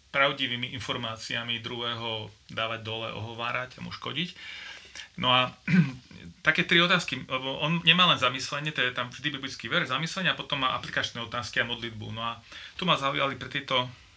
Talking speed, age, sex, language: 165 wpm, 40-59, male, Slovak